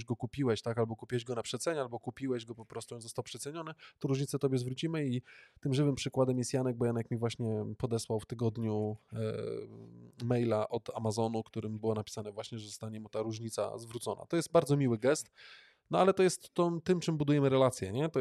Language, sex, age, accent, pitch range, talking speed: Polish, male, 20-39, native, 115-135 Hz, 210 wpm